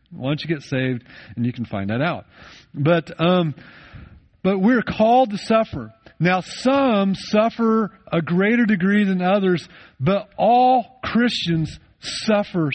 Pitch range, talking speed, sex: 130-180 Hz, 140 wpm, male